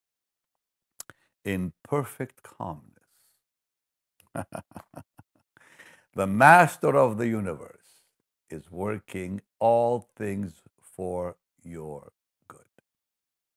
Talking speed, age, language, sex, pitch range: 65 wpm, 60-79, English, male, 125-190 Hz